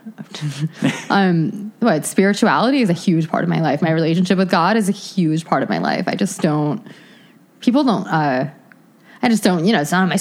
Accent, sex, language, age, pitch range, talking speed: American, female, English, 20-39, 170-225 Hz, 210 wpm